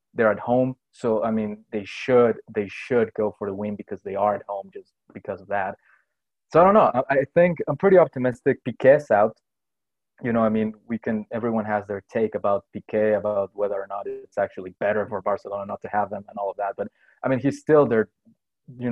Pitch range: 105-120 Hz